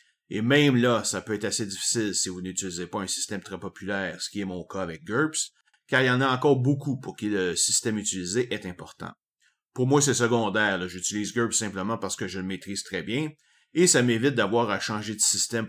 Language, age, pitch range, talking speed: French, 30-49, 95-125 Hz, 230 wpm